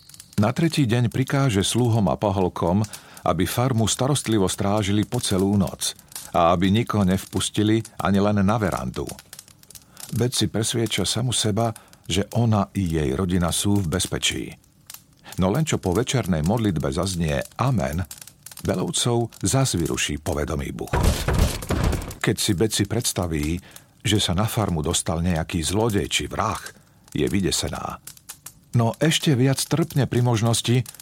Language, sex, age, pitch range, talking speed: Slovak, male, 50-69, 95-120 Hz, 130 wpm